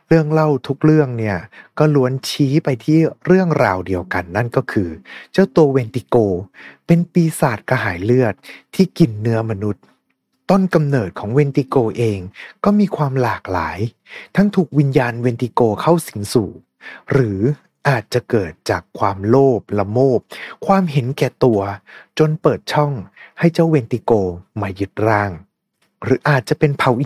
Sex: male